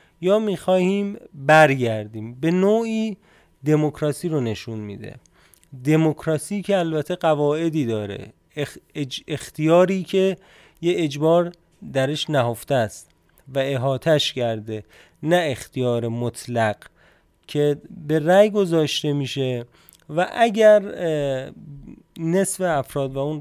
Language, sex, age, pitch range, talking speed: Persian, male, 30-49, 135-175 Hz, 105 wpm